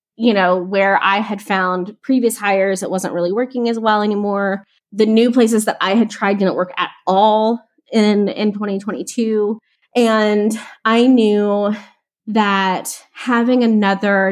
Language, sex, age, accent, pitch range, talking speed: English, female, 20-39, American, 195-240 Hz, 145 wpm